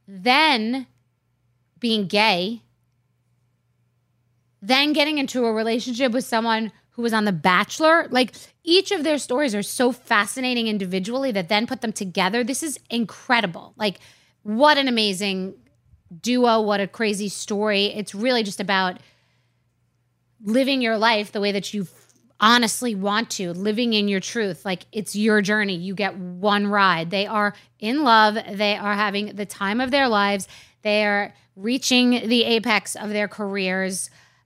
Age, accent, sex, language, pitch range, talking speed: 20-39, American, female, English, 195-240 Hz, 150 wpm